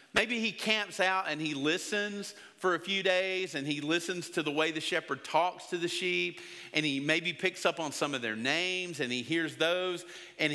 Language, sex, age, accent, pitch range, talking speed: English, male, 40-59, American, 155-185 Hz, 215 wpm